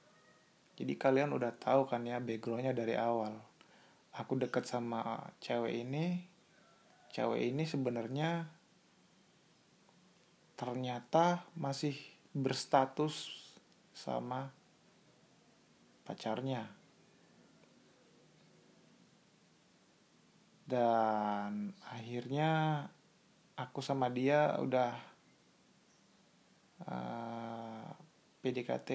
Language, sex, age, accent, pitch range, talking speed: Indonesian, male, 20-39, native, 120-155 Hz, 60 wpm